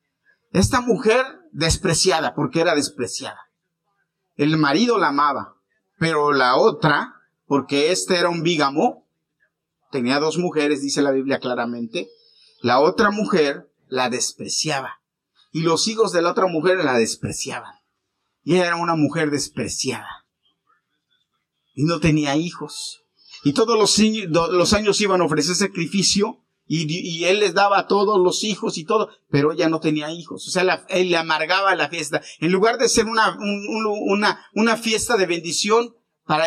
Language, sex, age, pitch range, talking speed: Spanish, male, 50-69, 140-205 Hz, 150 wpm